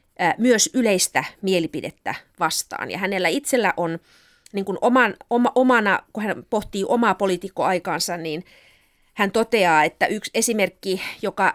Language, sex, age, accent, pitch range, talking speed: Finnish, female, 30-49, native, 165-220 Hz, 130 wpm